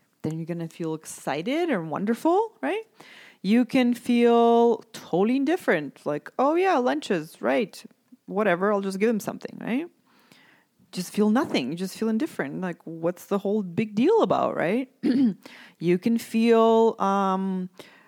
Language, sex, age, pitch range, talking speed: English, female, 30-49, 170-250 Hz, 145 wpm